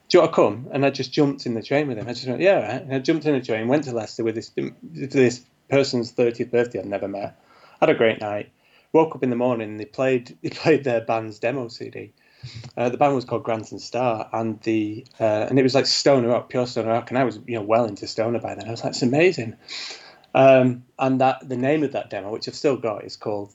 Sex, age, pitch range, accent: male, 30-49, 110-130 Hz, British